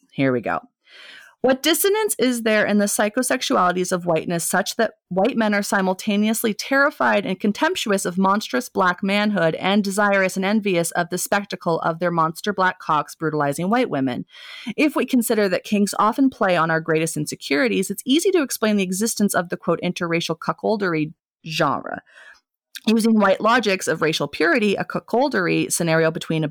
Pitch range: 160-215 Hz